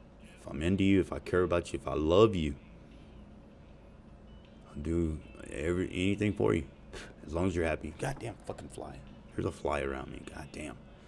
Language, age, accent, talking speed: English, 30-49, American, 180 wpm